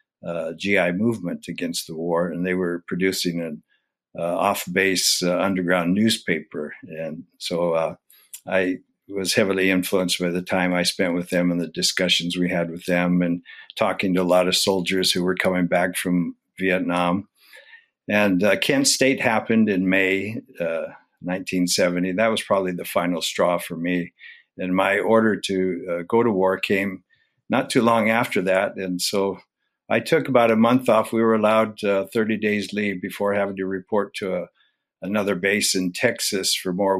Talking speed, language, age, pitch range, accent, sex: 170 wpm, English, 60-79, 90-110 Hz, American, male